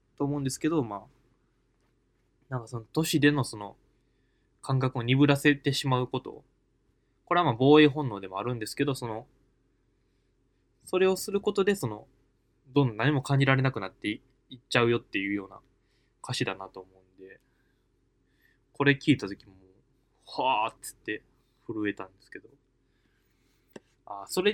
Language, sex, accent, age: Japanese, male, native, 20-39